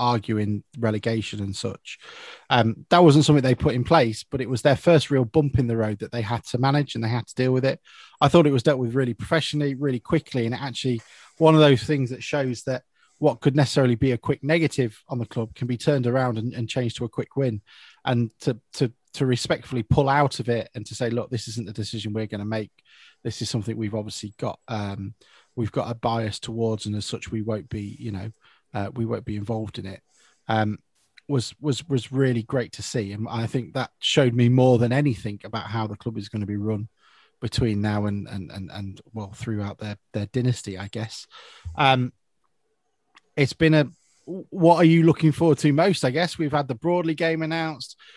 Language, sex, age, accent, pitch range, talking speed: English, male, 20-39, British, 110-145 Hz, 225 wpm